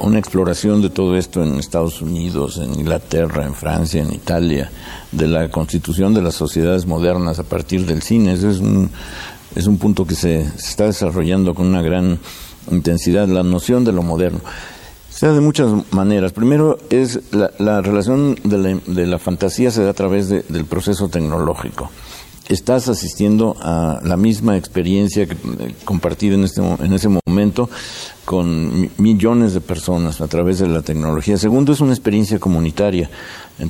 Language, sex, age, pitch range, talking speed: Spanish, male, 60-79, 85-105 Hz, 175 wpm